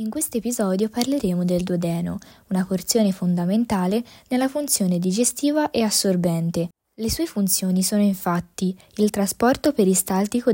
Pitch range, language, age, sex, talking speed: 175-225 Hz, Italian, 20-39, female, 125 wpm